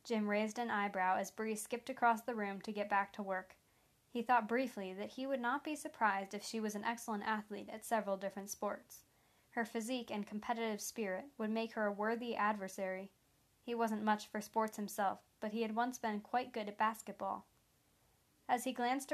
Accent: American